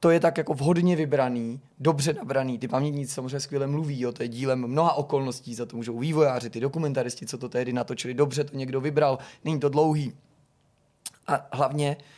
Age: 20-39